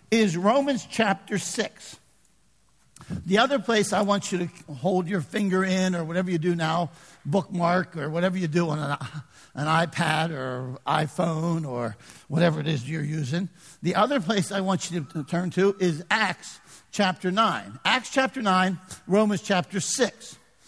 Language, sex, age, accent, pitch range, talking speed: English, male, 60-79, American, 170-220 Hz, 165 wpm